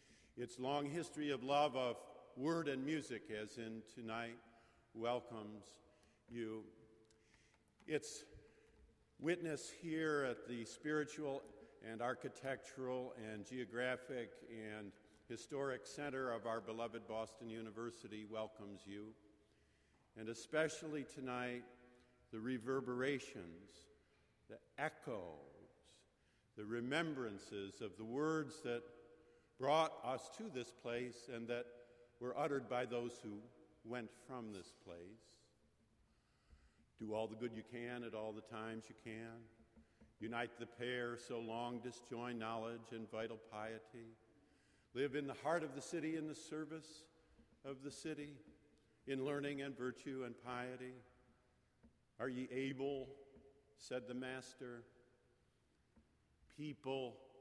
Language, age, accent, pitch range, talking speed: English, 50-69, American, 115-135 Hz, 115 wpm